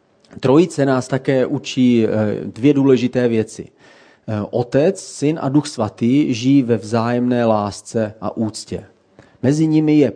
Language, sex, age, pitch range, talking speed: Czech, male, 40-59, 115-145 Hz, 125 wpm